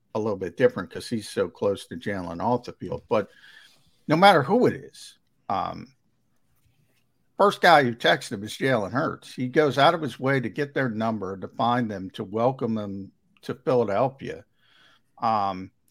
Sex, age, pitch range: male, 50-69, 115-145 Hz